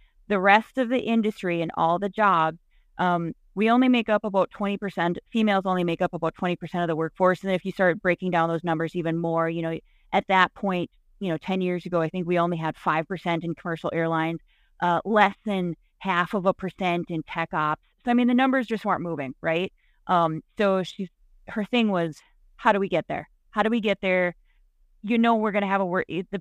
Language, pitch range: English, 170-210 Hz